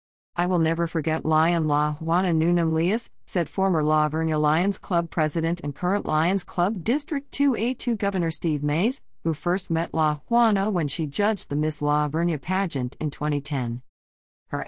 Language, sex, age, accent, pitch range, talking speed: English, female, 50-69, American, 145-185 Hz, 170 wpm